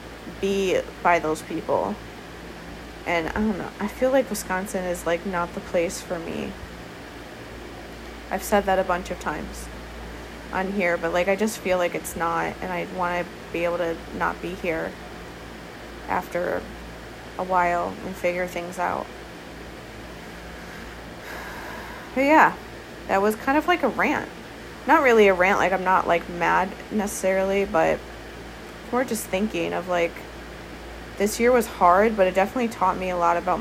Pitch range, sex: 175-195 Hz, female